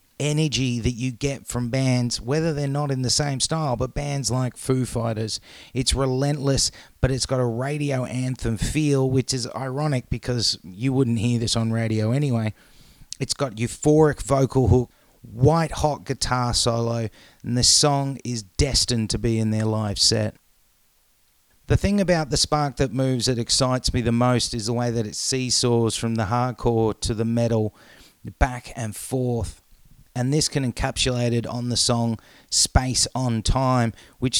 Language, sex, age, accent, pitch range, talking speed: English, male, 30-49, Australian, 115-130 Hz, 170 wpm